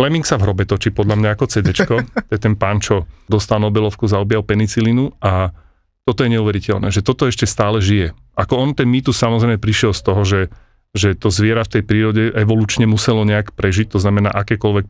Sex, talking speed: male, 200 wpm